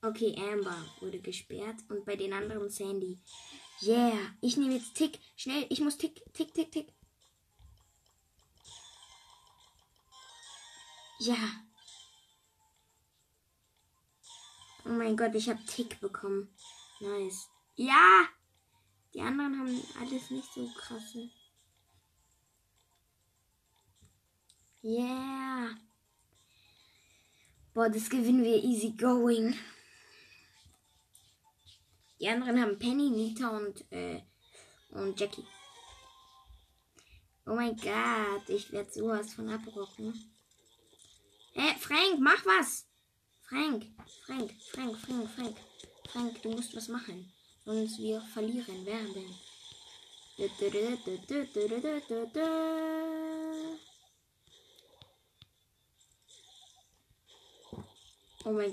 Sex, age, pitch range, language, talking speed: female, 20-39, 190-260 Hz, English, 85 wpm